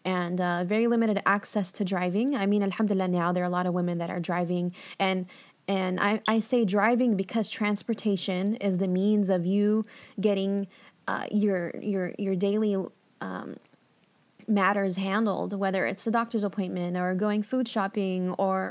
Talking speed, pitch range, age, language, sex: 165 wpm, 185-220 Hz, 20-39, English, female